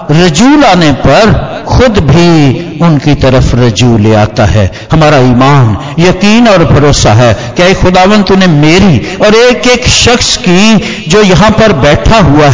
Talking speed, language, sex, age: 155 wpm, Hindi, male, 60-79